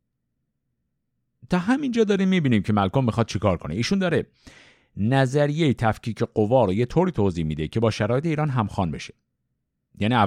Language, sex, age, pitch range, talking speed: Persian, male, 50-69, 100-160 Hz, 150 wpm